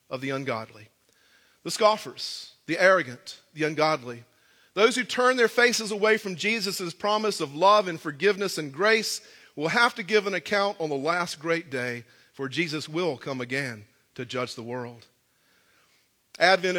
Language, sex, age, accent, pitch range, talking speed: English, male, 40-59, American, 140-205 Hz, 160 wpm